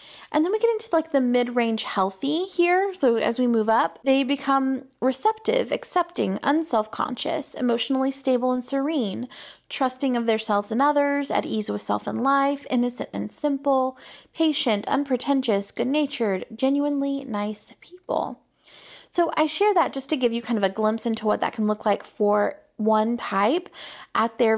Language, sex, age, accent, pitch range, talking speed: English, female, 30-49, American, 215-290 Hz, 165 wpm